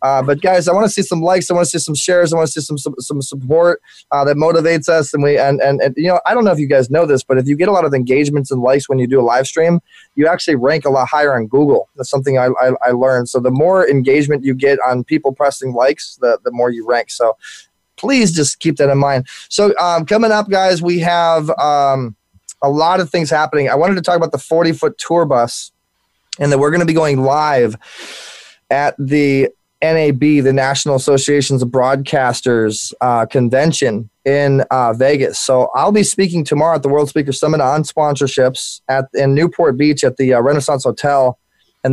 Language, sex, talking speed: English, male, 230 wpm